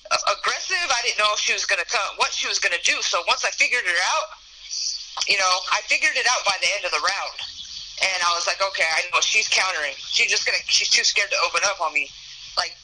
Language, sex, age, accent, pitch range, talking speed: English, female, 20-39, American, 160-210 Hz, 250 wpm